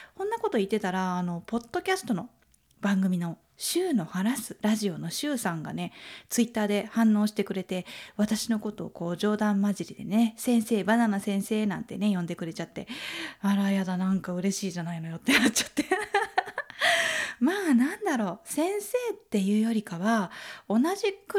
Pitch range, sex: 180-245 Hz, female